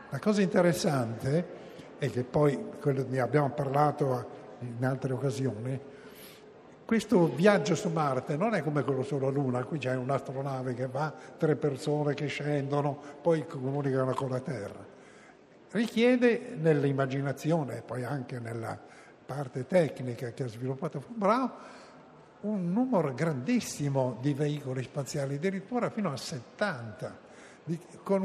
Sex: male